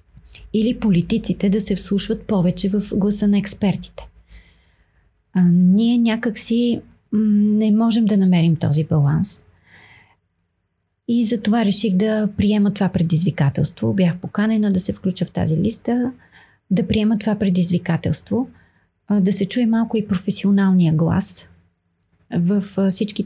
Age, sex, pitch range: 30-49, female, 175-210 Hz